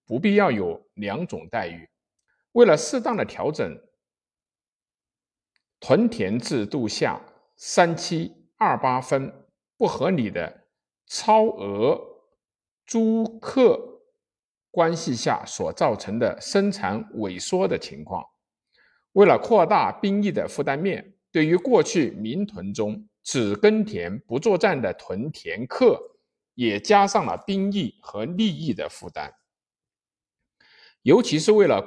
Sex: male